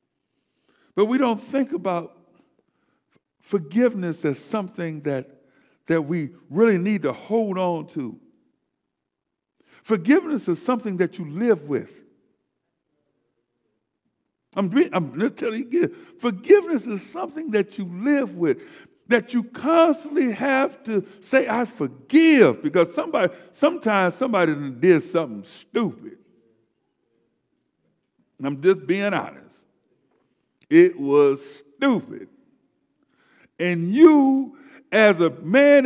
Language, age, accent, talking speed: English, 60-79, American, 110 wpm